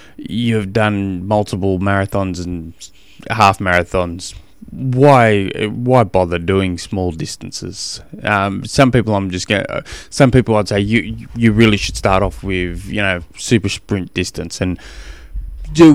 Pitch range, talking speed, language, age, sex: 95-120 Hz, 140 wpm, English, 20-39, male